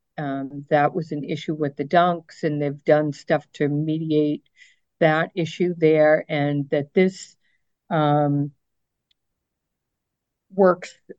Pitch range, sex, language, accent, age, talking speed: 140-165 Hz, female, English, American, 50-69, 120 wpm